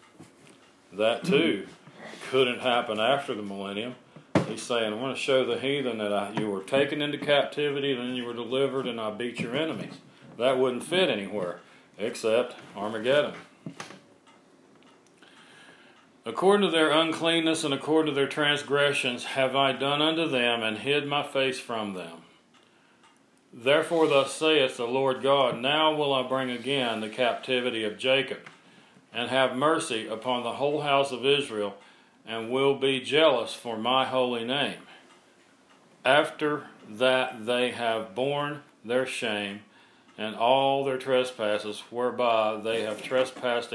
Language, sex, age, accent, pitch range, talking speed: English, male, 40-59, American, 115-140 Hz, 140 wpm